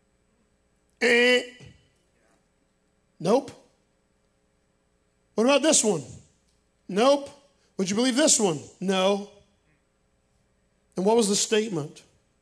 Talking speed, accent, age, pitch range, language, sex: 85 wpm, American, 50-69, 160-220 Hz, English, male